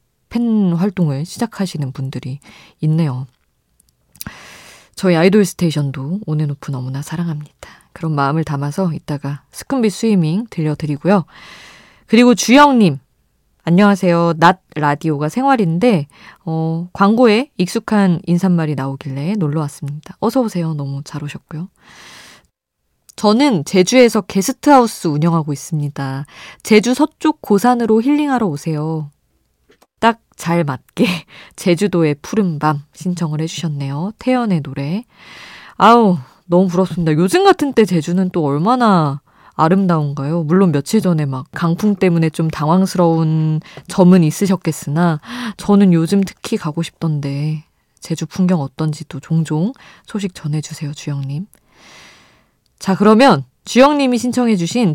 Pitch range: 150-210 Hz